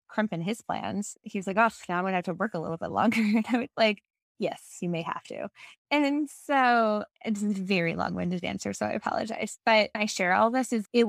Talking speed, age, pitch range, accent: 235 wpm, 20-39, 175-220 Hz, American